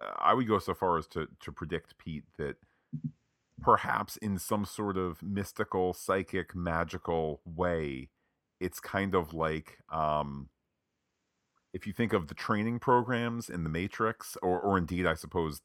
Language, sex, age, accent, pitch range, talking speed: English, male, 40-59, American, 80-100 Hz, 155 wpm